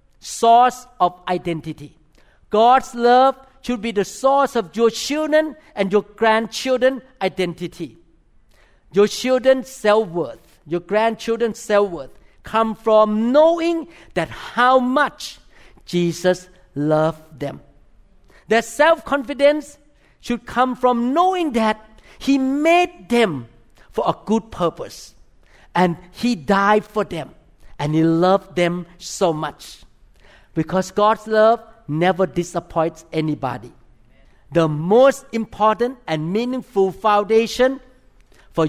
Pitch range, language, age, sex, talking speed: 165-235 Hz, English, 50-69, male, 105 wpm